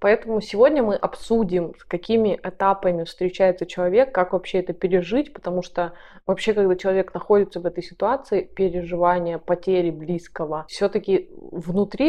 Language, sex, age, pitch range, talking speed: Russian, female, 20-39, 175-200 Hz, 135 wpm